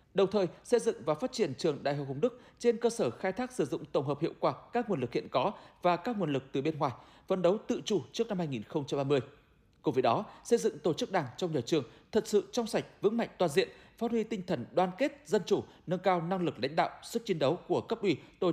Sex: male